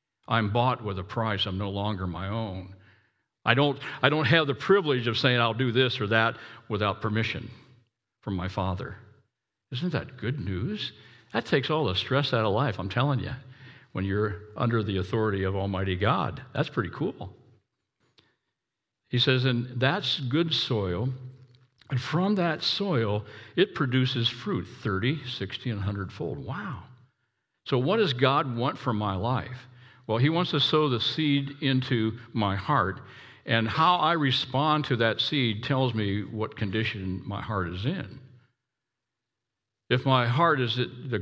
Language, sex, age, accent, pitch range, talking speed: English, male, 60-79, American, 110-130 Hz, 165 wpm